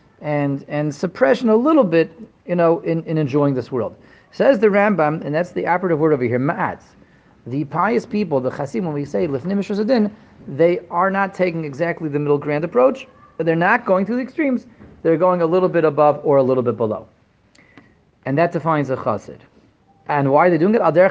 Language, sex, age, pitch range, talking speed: English, male, 40-59, 125-175 Hz, 205 wpm